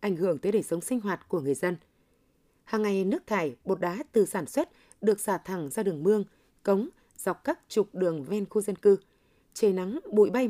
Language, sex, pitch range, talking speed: Vietnamese, female, 185-230 Hz, 215 wpm